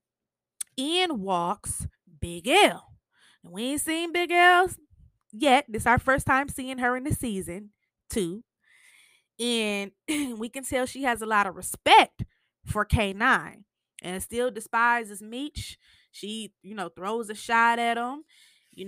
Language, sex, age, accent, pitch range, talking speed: English, female, 20-39, American, 195-265 Hz, 150 wpm